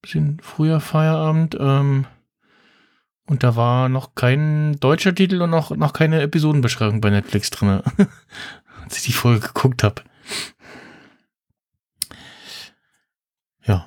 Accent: German